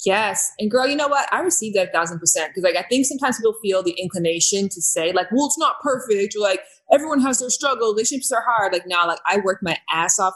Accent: American